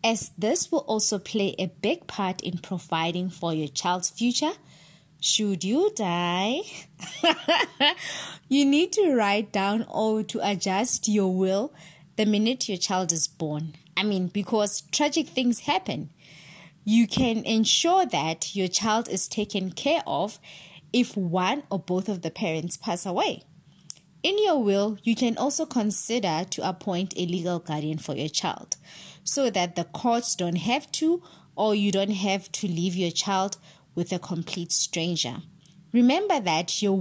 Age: 20-39